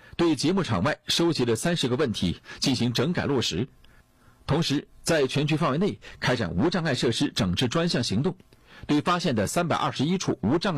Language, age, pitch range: Chinese, 50-69, 120-170 Hz